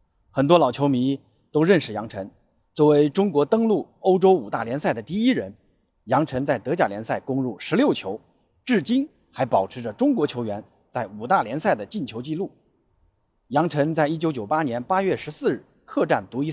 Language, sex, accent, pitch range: Chinese, male, native, 125-190 Hz